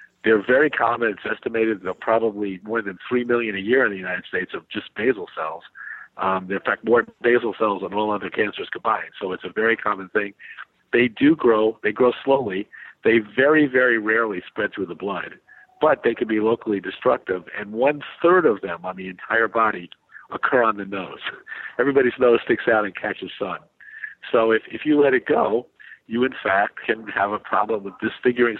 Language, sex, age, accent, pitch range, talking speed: English, male, 50-69, American, 105-135 Hz, 195 wpm